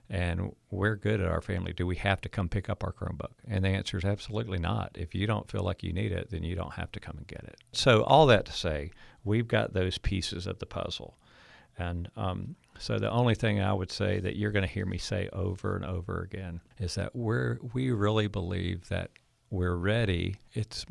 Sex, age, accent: male, 50-69, American